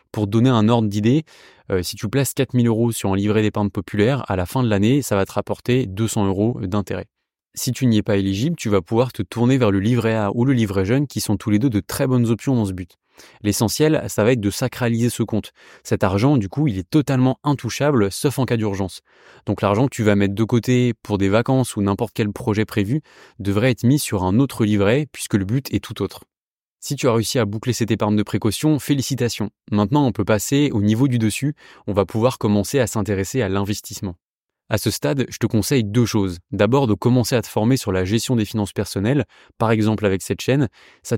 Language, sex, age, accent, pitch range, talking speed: French, male, 20-39, French, 105-130 Hz, 235 wpm